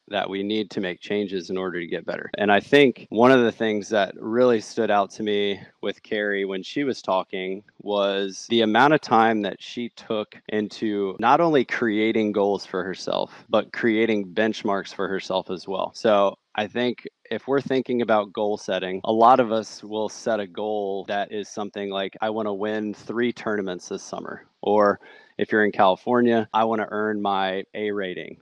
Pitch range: 100-115 Hz